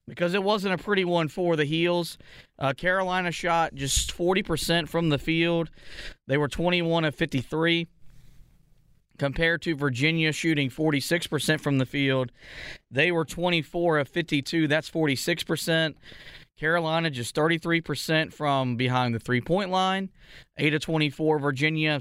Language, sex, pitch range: English, male, 140-165 Hz